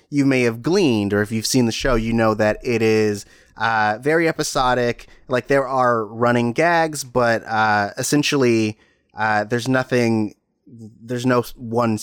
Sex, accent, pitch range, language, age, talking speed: male, American, 110-130 Hz, English, 30-49, 160 wpm